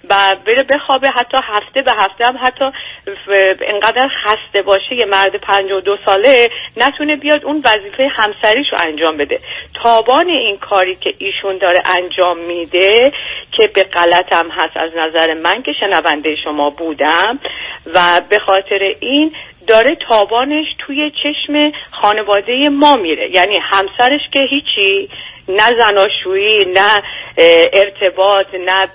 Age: 40-59